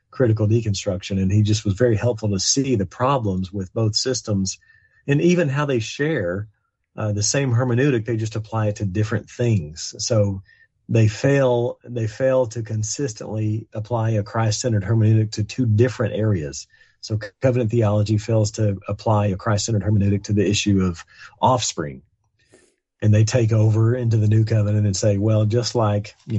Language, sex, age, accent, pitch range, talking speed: English, male, 40-59, American, 100-120 Hz, 170 wpm